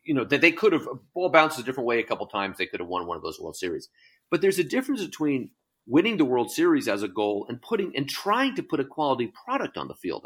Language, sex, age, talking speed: English, male, 40-59, 275 wpm